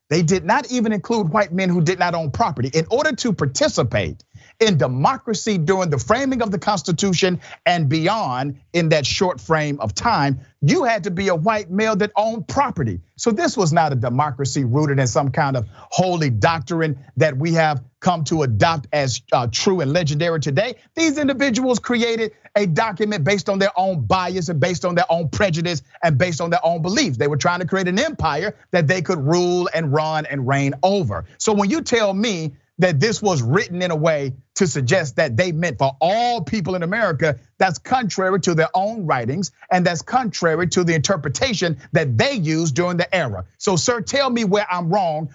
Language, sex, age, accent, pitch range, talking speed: English, male, 50-69, American, 150-200 Hz, 200 wpm